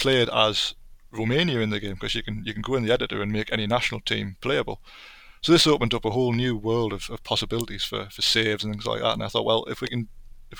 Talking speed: 265 wpm